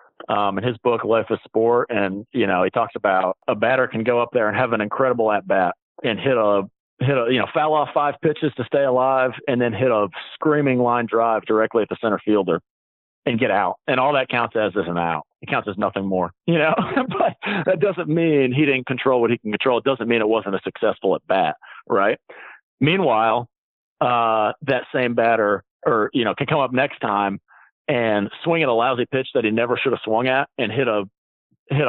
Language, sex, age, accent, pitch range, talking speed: English, male, 40-59, American, 105-135 Hz, 225 wpm